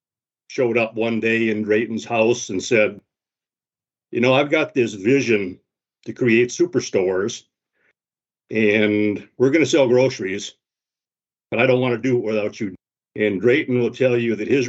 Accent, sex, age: American, male, 60-79